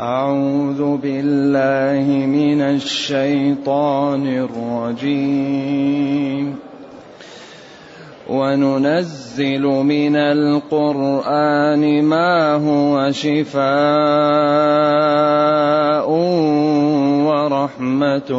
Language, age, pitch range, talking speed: Arabic, 30-49, 135-150 Hz, 40 wpm